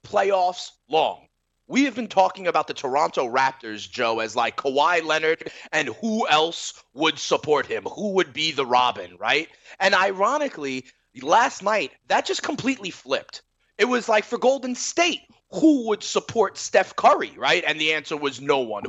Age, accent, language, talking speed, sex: 30-49, American, English, 170 wpm, male